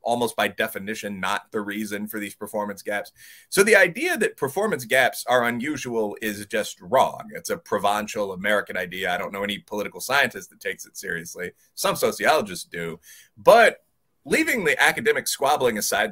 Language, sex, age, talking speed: English, male, 30-49, 170 wpm